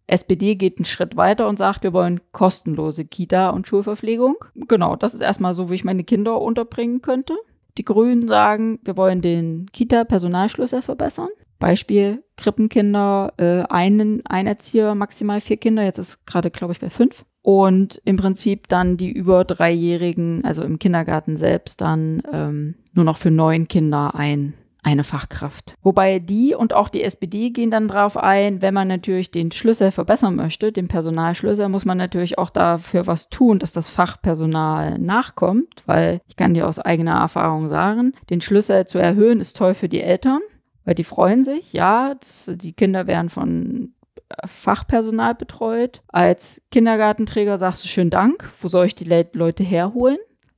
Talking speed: 165 wpm